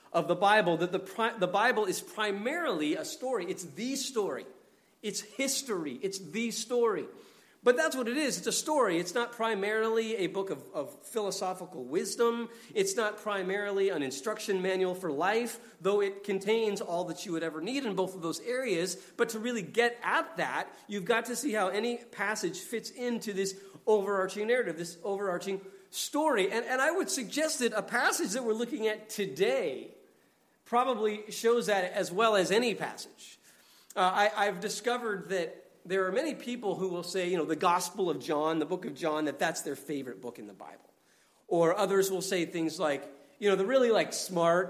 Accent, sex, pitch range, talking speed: American, male, 175-230 Hz, 190 wpm